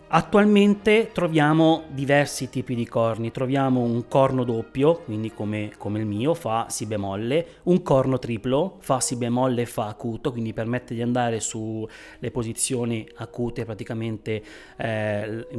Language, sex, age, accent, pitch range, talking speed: Italian, male, 30-49, native, 115-145 Hz, 140 wpm